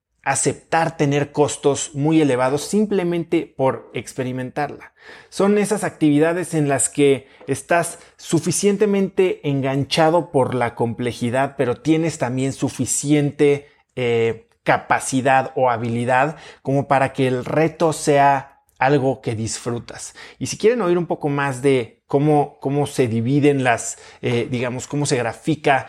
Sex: male